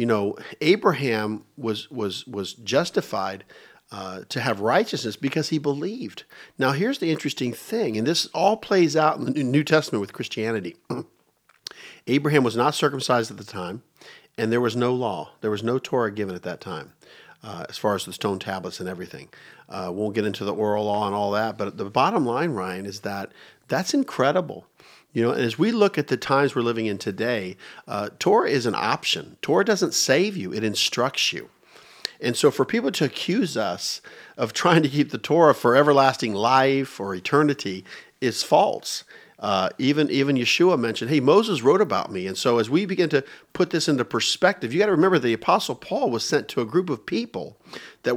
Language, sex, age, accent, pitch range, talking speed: English, male, 50-69, American, 105-145 Hz, 195 wpm